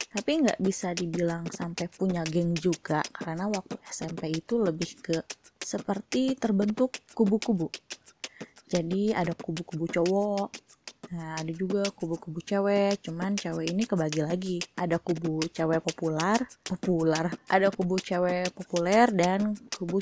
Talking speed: 125 wpm